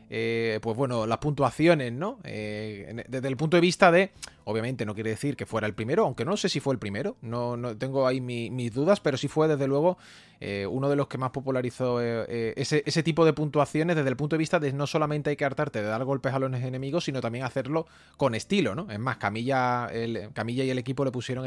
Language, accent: English, Spanish